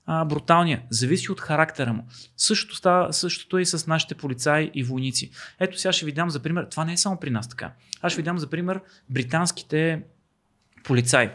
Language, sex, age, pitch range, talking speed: Bulgarian, male, 30-49, 125-175 Hz, 190 wpm